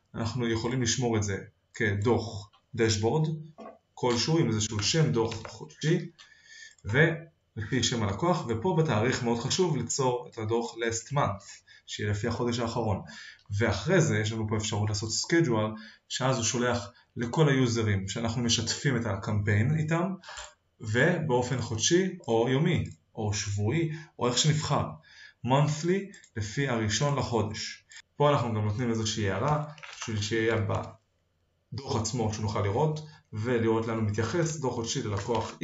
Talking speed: 135 wpm